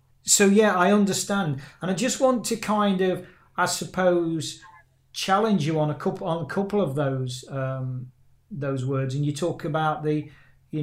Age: 40-59